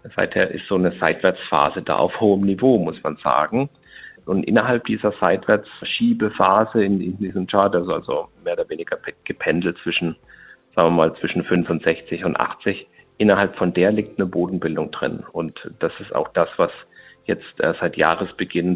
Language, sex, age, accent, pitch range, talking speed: German, male, 50-69, German, 90-115 Hz, 155 wpm